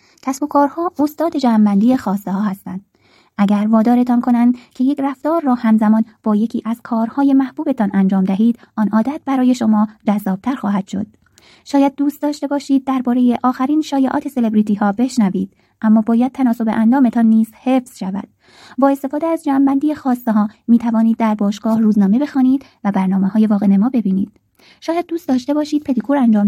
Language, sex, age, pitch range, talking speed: Persian, female, 20-39, 210-270 Hz, 155 wpm